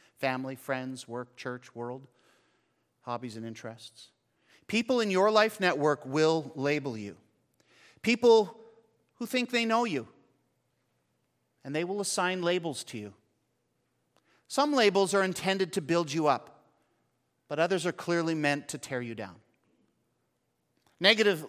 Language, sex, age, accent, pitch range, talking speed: English, male, 40-59, American, 120-175 Hz, 130 wpm